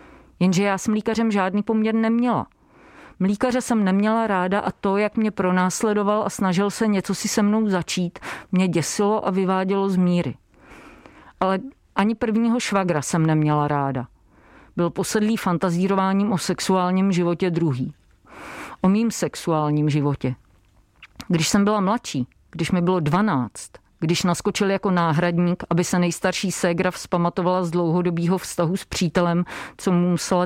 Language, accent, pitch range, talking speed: Czech, native, 170-200 Hz, 145 wpm